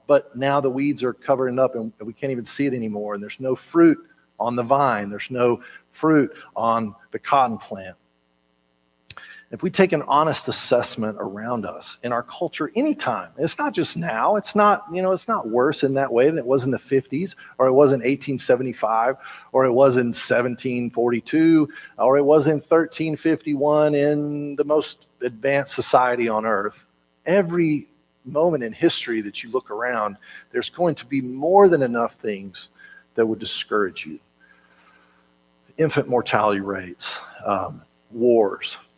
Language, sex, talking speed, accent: English, male, 165 wpm, American